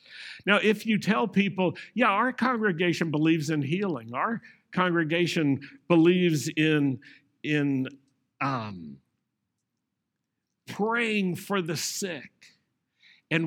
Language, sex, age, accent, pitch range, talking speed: English, male, 60-79, American, 155-200 Hz, 100 wpm